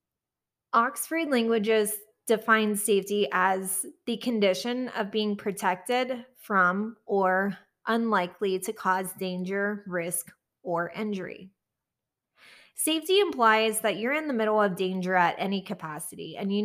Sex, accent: female, American